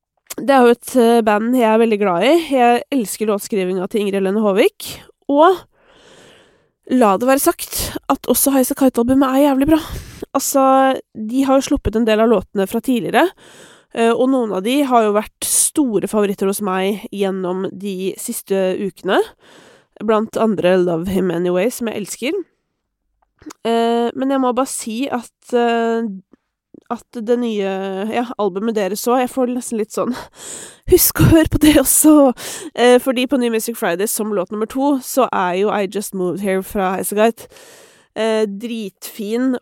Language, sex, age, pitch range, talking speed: English, female, 20-39, 200-265 Hz, 165 wpm